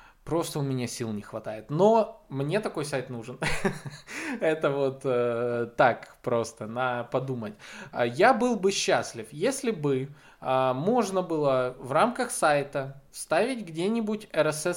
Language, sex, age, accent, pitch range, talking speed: Russian, male, 20-39, native, 130-180 Hz, 135 wpm